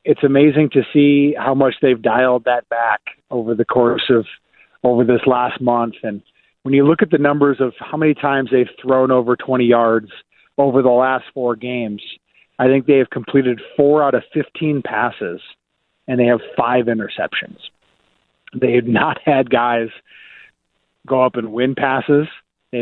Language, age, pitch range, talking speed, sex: English, 40-59, 125-140 Hz, 170 wpm, male